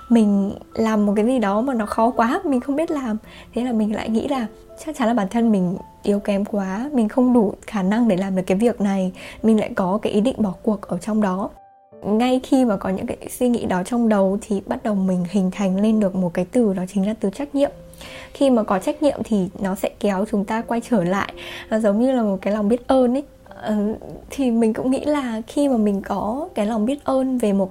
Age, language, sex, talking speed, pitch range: 10-29, Vietnamese, female, 250 wpm, 205-255 Hz